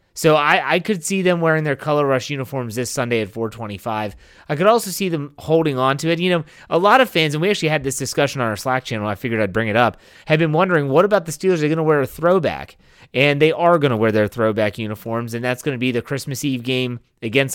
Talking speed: 265 wpm